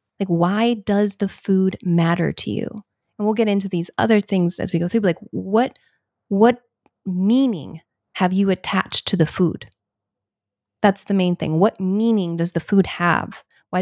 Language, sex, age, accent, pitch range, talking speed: English, female, 20-39, American, 170-200 Hz, 180 wpm